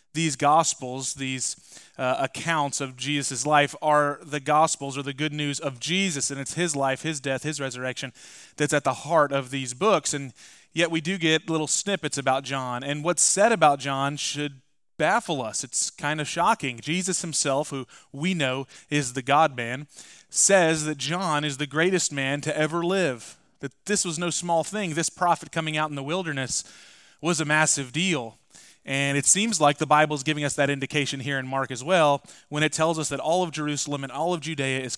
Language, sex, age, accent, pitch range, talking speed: English, male, 30-49, American, 135-160 Hz, 200 wpm